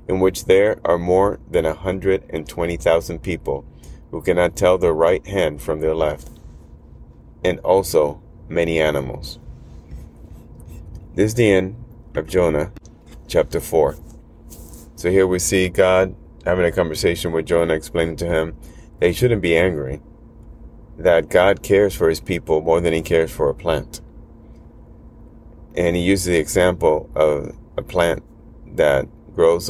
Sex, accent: male, American